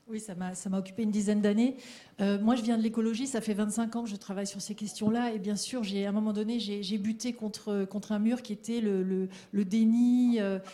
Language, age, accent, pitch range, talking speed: French, 40-59, French, 210-245 Hz, 265 wpm